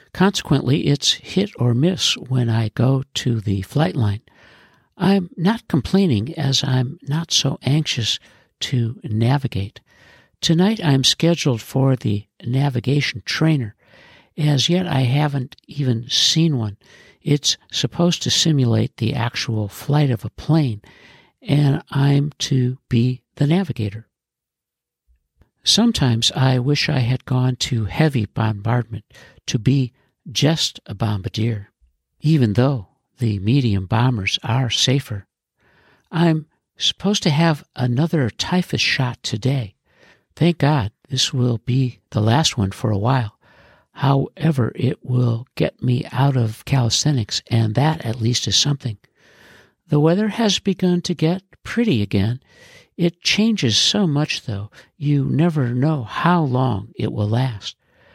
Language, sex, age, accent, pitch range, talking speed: English, male, 60-79, American, 115-150 Hz, 130 wpm